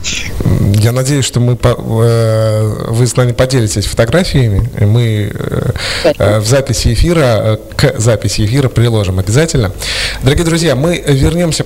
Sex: male